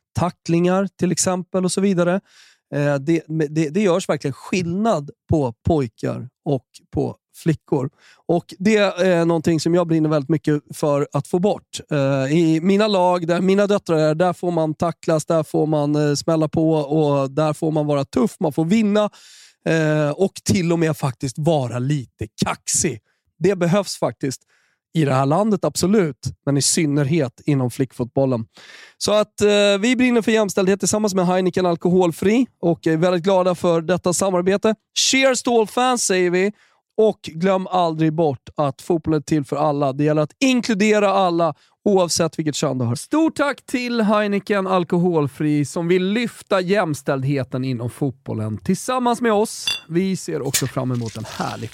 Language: Swedish